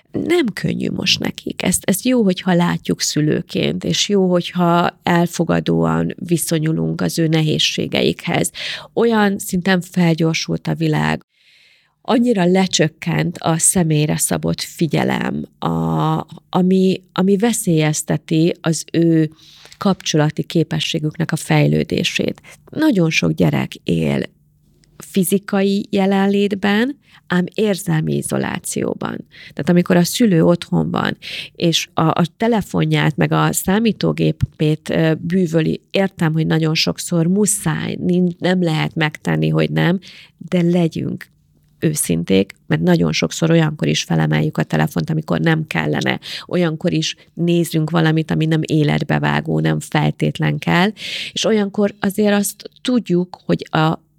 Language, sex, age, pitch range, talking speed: Hungarian, female, 30-49, 150-185 Hz, 110 wpm